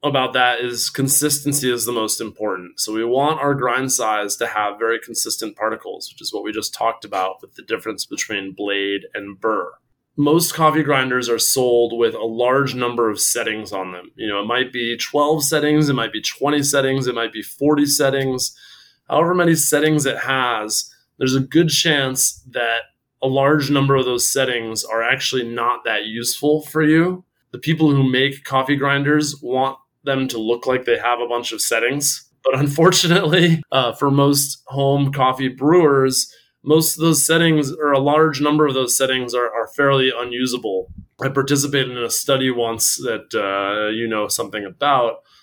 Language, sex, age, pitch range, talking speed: English, male, 20-39, 120-145 Hz, 180 wpm